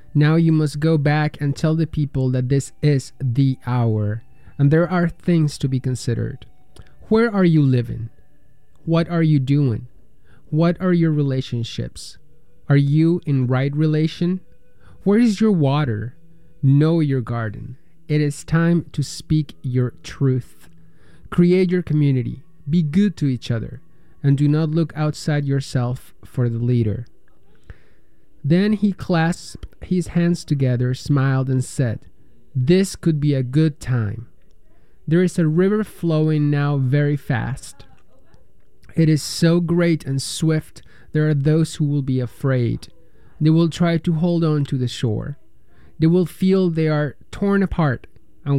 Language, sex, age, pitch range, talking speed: English, male, 20-39, 130-165 Hz, 150 wpm